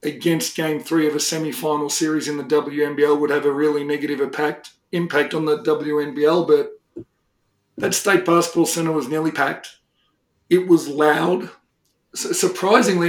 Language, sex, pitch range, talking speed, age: English, male, 155-175 Hz, 145 wpm, 50-69